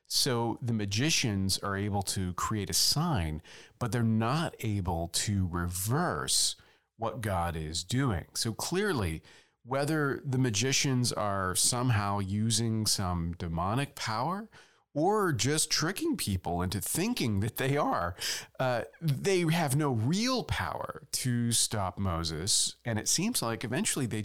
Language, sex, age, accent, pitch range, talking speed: English, male, 40-59, American, 95-140 Hz, 135 wpm